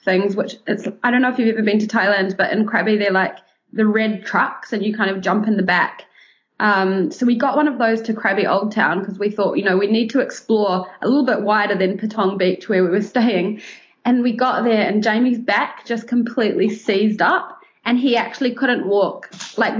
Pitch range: 205-240 Hz